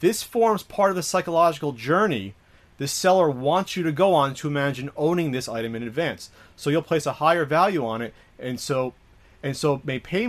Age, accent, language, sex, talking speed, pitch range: 30-49, American, English, male, 205 wpm, 120-170 Hz